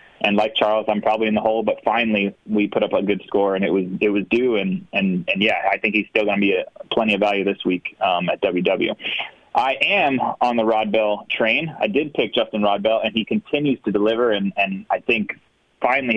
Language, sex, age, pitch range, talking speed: English, male, 20-39, 105-125 Hz, 240 wpm